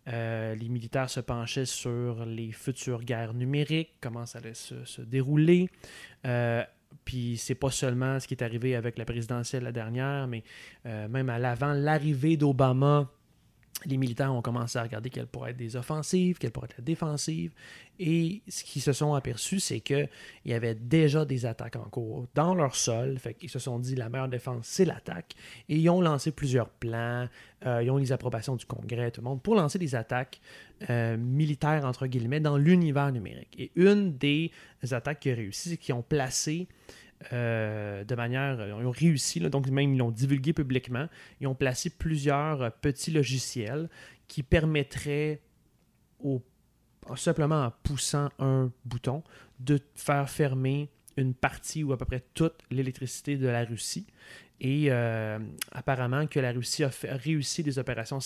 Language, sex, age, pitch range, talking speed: French, male, 30-49, 120-150 Hz, 180 wpm